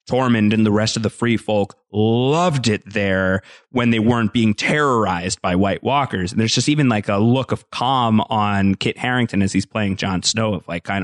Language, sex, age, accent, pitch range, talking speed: English, male, 30-49, American, 110-145 Hz, 210 wpm